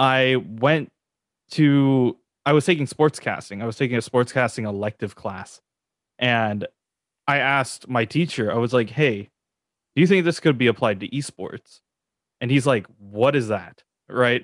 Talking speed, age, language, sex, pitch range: 170 wpm, 20-39, English, male, 115-145 Hz